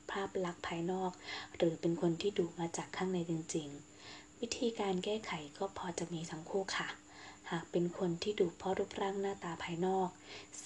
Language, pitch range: Thai, 165-190 Hz